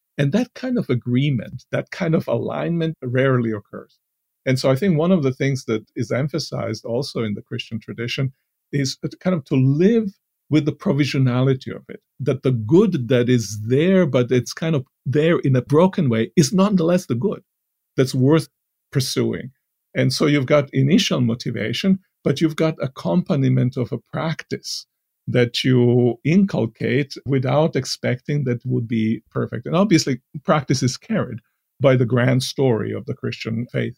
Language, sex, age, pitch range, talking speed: English, male, 50-69, 120-150 Hz, 165 wpm